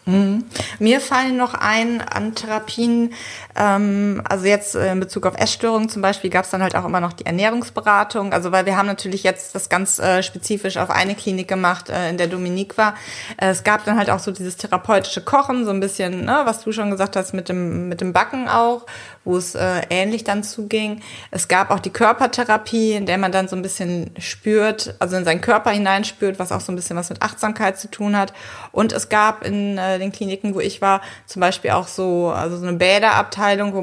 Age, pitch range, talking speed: 30-49, 180-215 Hz, 220 wpm